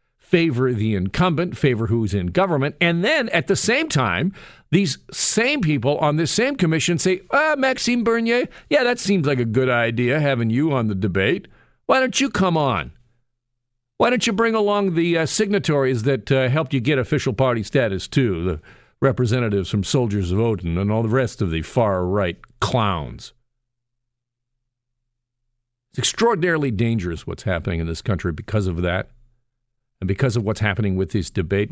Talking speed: 170 wpm